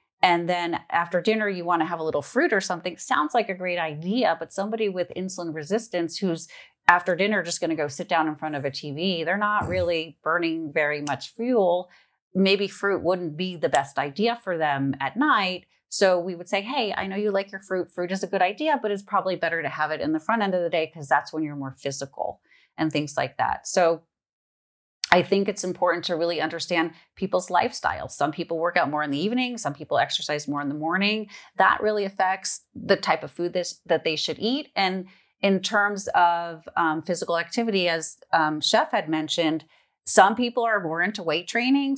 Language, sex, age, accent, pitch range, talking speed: English, female, 30-49, American, 160-195 Hz, 215 wpm